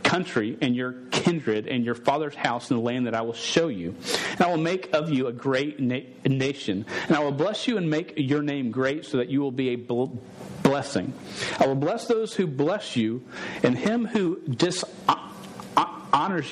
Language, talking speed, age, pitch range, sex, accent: English, 200 wpm, 40-59, 135-180 Hz, male, American